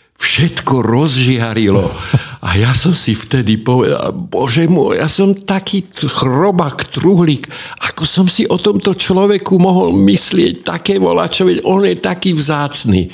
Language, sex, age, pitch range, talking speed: Slovak, male, 60-79, 90-135 Hz, 130 wpm